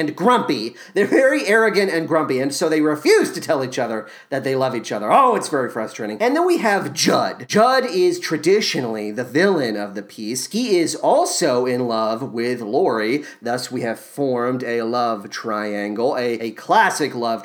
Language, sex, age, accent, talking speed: English, male, 40-59, American, 185 wpm